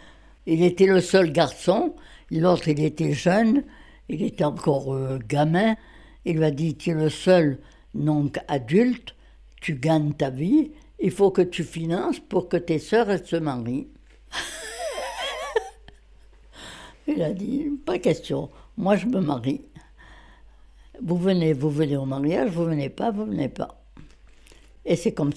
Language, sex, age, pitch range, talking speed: French, female, 60-79, 150-225 Hz, 155 wpm